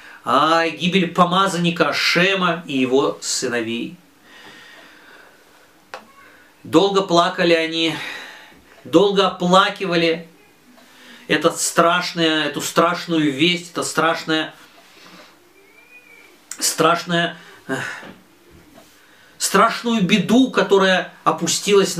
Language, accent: Russian, native